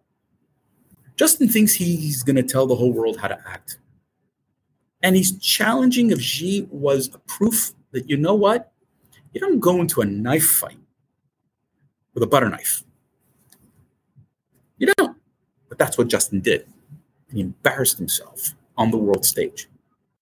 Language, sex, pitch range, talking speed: English, male, 130-180 Hz, 140 wpm